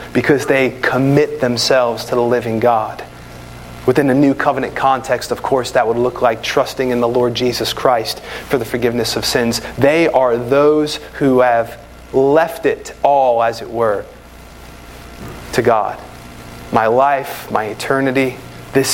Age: 30-49